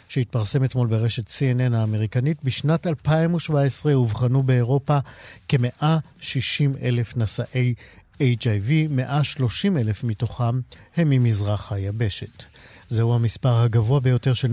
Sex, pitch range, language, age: male, 115-150 Hz, Hebrew, 50-69